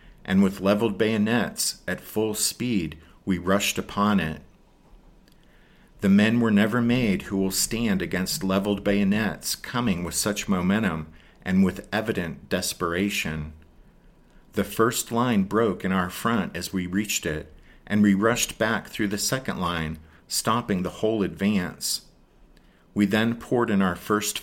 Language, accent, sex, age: English, American, male, 50-69